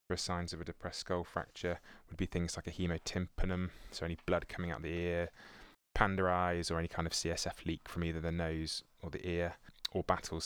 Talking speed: 205 wpm